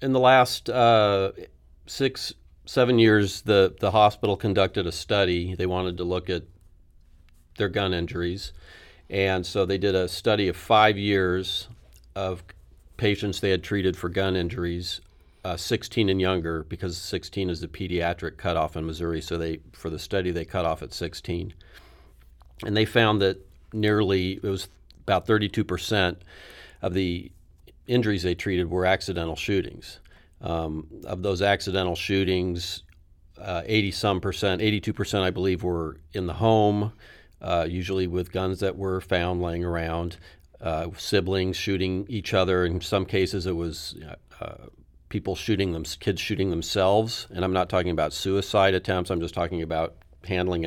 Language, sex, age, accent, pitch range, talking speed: English, male, 40-59, American, 85-100 Hz, 155 wpm